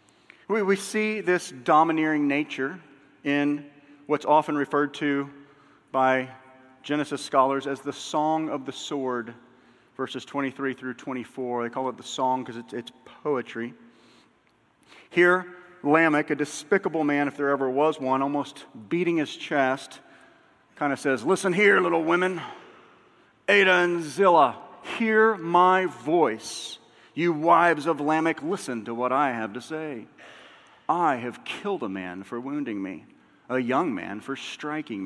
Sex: male